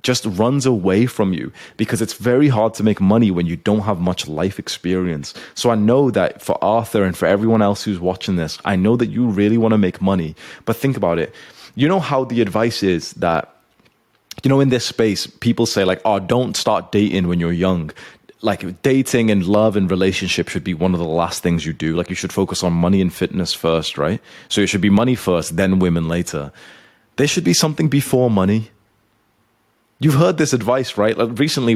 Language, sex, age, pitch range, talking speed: English, male, 20-39, 90-115 Hz, 215 wpm